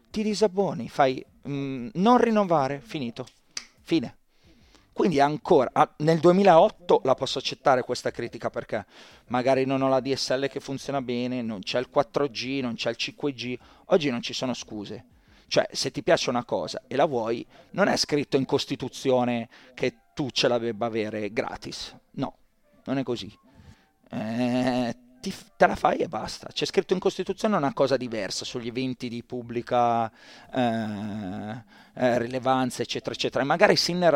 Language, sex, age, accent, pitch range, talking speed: Italian, male, 30-49, native, 115-140 Hz, 155 wpm